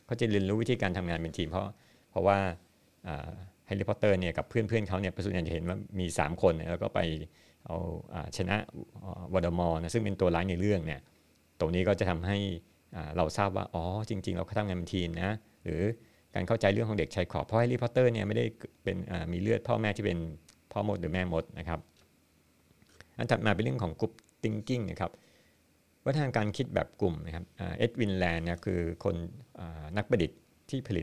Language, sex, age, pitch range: Thai, male, 60-79, 85-105 Hz